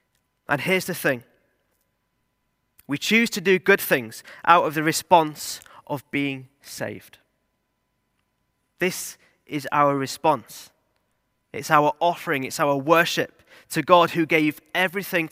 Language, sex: English, male